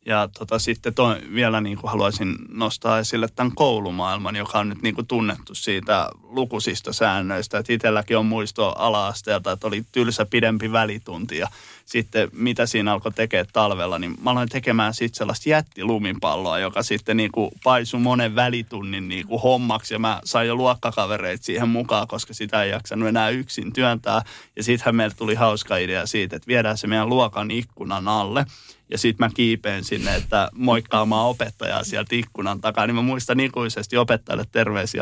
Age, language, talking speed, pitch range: 20-39, Finnish, 165 wpm, 105-120 Hz